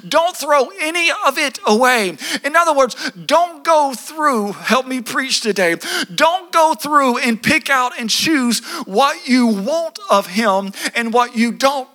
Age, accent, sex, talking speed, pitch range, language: 50-69, American, male, 165 wpm, 230-295 Hz, English